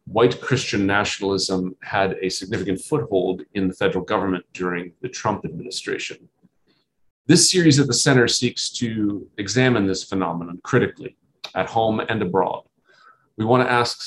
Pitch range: 95-120 Hz